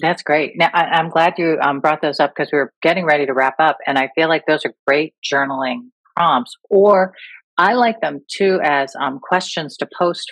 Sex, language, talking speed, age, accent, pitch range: female, English, 220 wpm, 50-69, American, 145-185 Hz